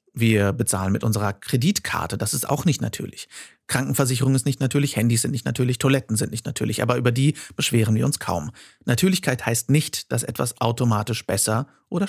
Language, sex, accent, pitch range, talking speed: German, male, German, 115-145 Hz, 185 wpm